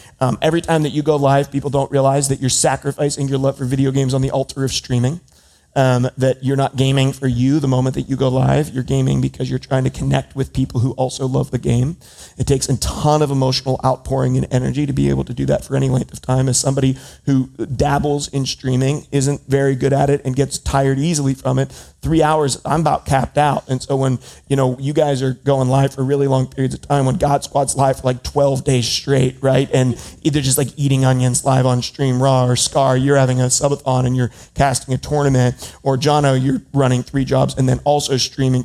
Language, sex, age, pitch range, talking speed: English, male, 30-49, 130-140 Hz, 235 wpm